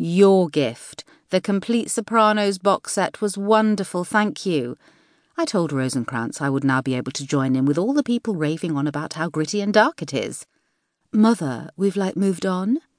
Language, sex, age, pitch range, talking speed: English, female, 40-59, 140-230 Hz, 185 wpm